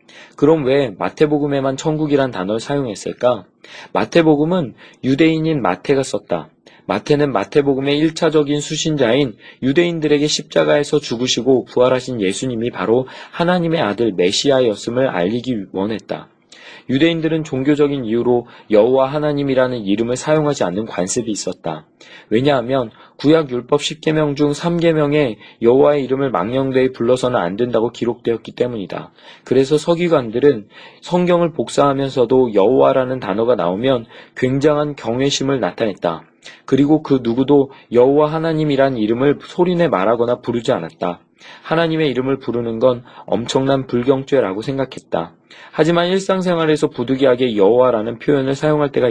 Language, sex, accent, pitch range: Korean, male, native, 120-150 Hz